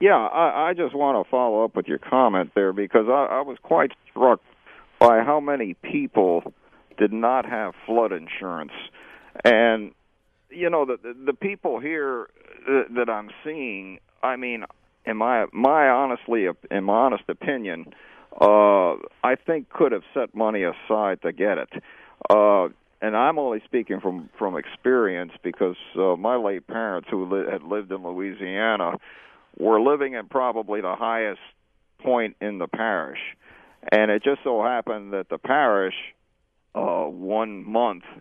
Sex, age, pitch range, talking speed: male, 50-69, 100-120 Hz, 155 wpm